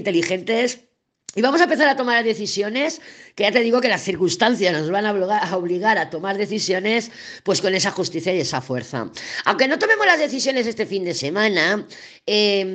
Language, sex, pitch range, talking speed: Spanish, female, 180-240 Hz, 185 wpm